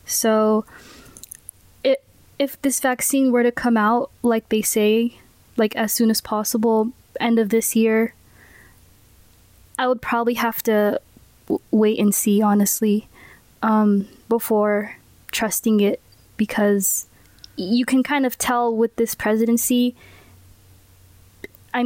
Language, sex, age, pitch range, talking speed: English, female, 20-39, 215-240 Hz, 125 wpm